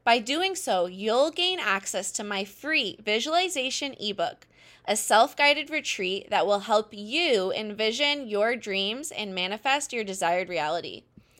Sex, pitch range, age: female, 200-280 Hz, 20-39